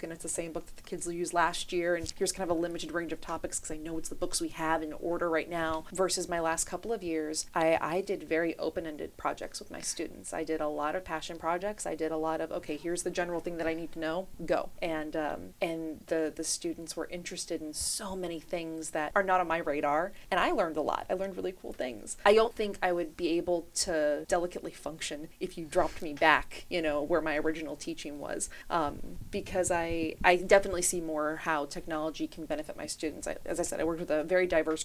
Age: 30-49